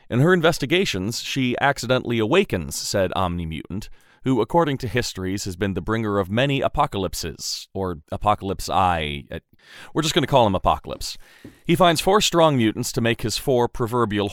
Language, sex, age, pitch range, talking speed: English, male, 30-49, 95-130 Hz, 160 wpm